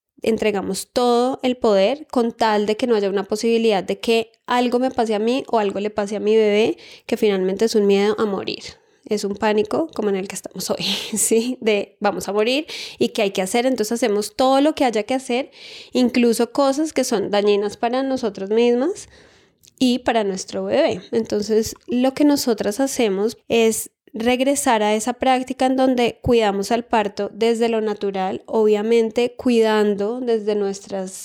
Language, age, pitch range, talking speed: Spanish, 10-29, 205-245 Hz, 180 wpm